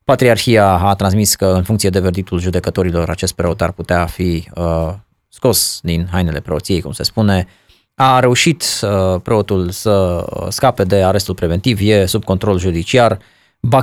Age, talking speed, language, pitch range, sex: 20-39, 155 wpm, Romanian, 90-115 Hz, male